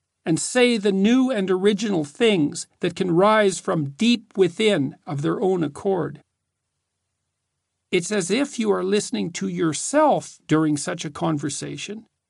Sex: male